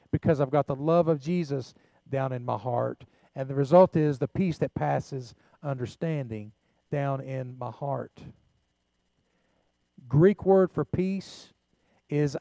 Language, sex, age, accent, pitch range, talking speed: English, male, 40-59, American, 130-170 Hz, 140 wpm